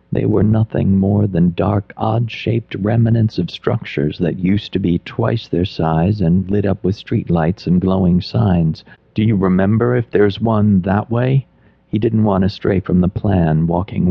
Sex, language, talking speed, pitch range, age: male, English, 180 wpm, 90-110 Hz, 50-69